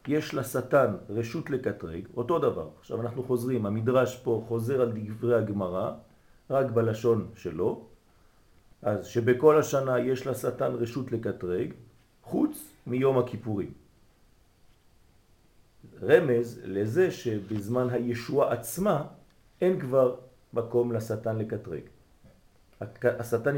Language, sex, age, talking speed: French, male, 50-69, 100 wpm